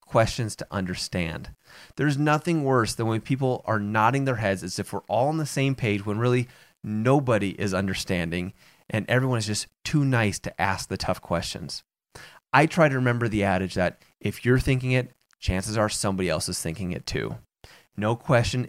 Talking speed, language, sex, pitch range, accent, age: 185 wpm, English, male, 105-135 Hz, American, 30-49